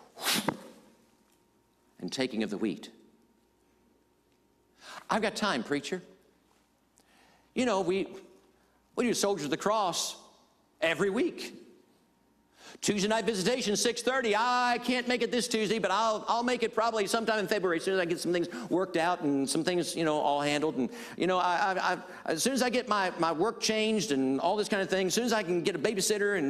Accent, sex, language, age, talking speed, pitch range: American, male, English, 50-69, 190 wpm, 130-215 Hz